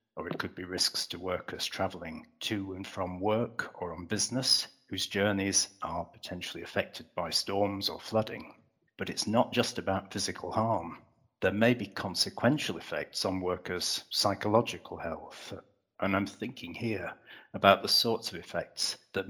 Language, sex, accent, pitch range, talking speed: English, male, British, 95-110 Hz, 155 wpm